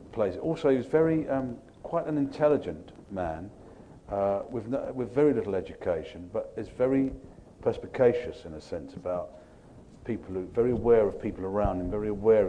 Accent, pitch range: British, 95-130 Hz